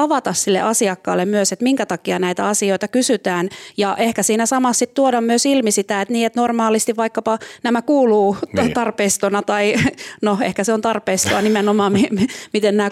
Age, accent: 30-49, native